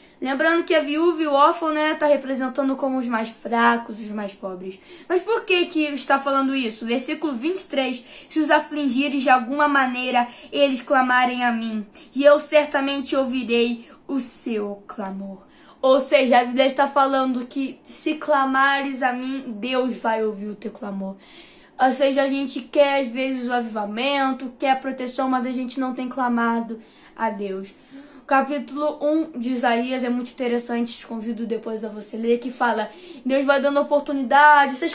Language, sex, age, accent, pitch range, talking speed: Portuguese, female, 10-29, Brazilian, 245-290 Hz, 175 wpm